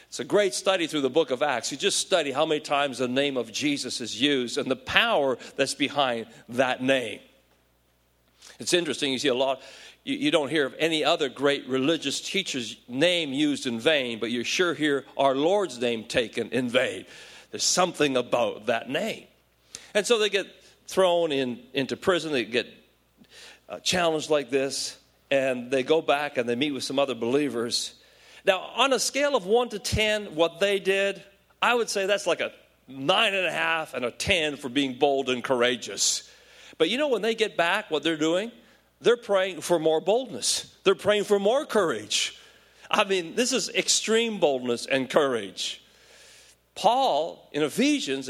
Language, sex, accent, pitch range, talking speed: English, male, American, 135-210 Hz, 180 wpm